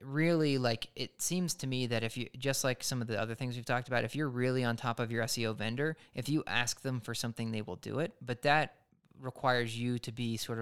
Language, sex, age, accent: English, male, 20-39, American